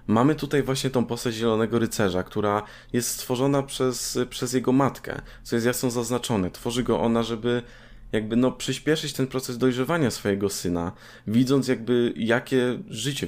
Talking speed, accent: 155 wpm, native